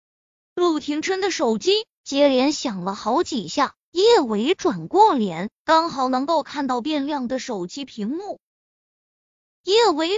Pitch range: 255-345 Hz